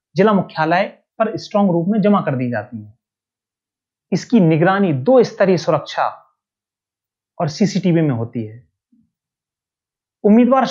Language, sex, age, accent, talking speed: English, male, 30-49, Indian, 125 wpm